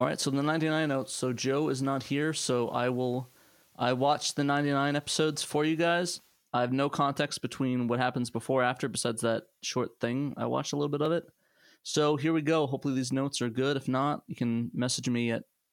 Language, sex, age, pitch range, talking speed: English, male, 20-39, 120-145 Hz, 220 wpm